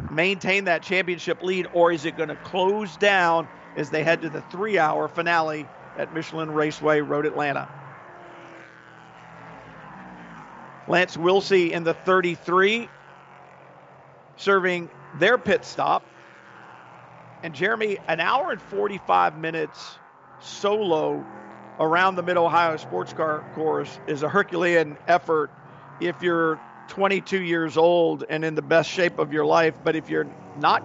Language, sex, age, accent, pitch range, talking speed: English, male, 50-69, American, 155-180 Hz, 130 wpm